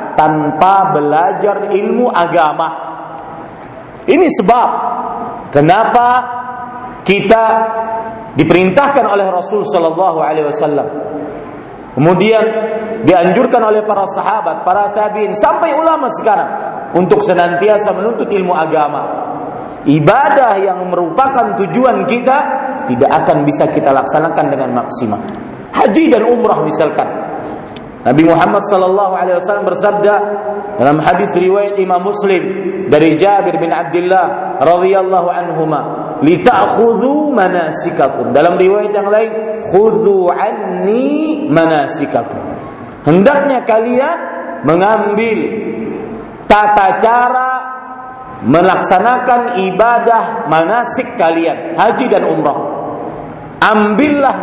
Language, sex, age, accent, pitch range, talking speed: Indonesian, male, 40-59, native, 180-240 Hz, 95 wpm